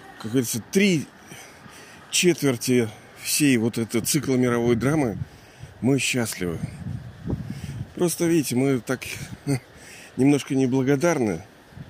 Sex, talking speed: male, 90 wpm